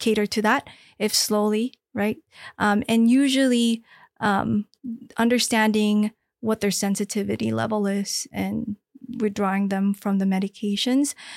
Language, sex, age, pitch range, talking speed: English, female, 20-39, 205-235 Hz, 115 wpm